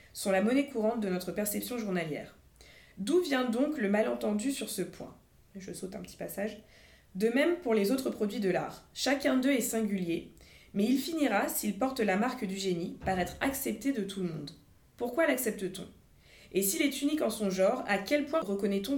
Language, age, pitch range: French, 20-39, 185-240 Hz